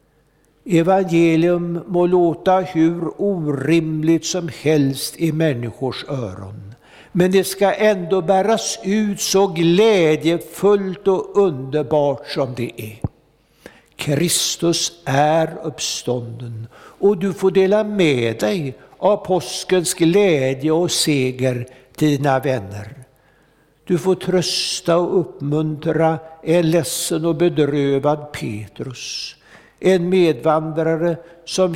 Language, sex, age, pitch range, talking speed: Swedish, male, 60-79, 130-170 Hz, 100 wpm